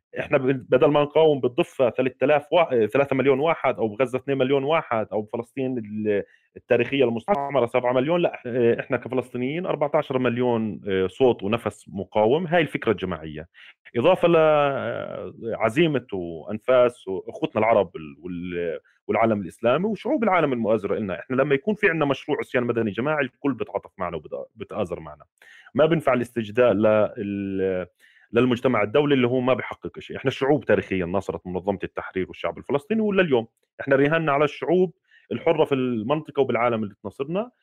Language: Arabic